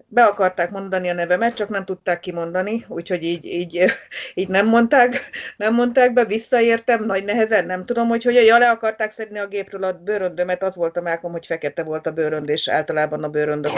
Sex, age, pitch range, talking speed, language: female, 30-49, 170-210 Hz, 195 wpm, Hungarian